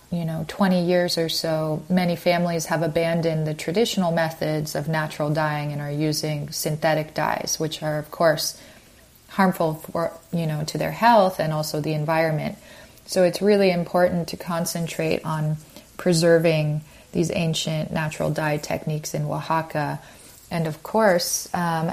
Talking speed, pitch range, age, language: 150 wpm, 155-175 Hz, 30-49, English